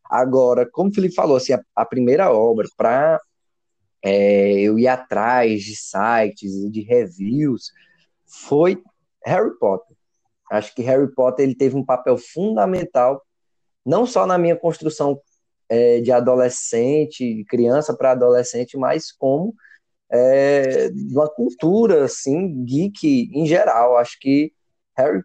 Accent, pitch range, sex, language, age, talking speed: Brazilian, 120-160 Hz, male, Portuguese, 20-39, 115 wpm